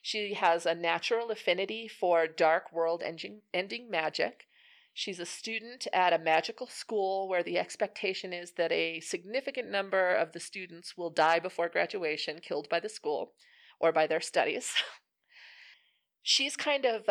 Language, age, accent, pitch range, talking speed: English, 30-49, American, 170-225 Hz, 150 wpm